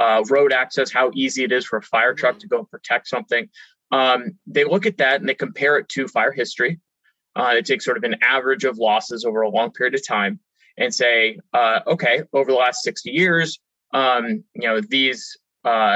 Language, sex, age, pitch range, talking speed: English, male, 20-39, 125-195 Hz, 215 wpm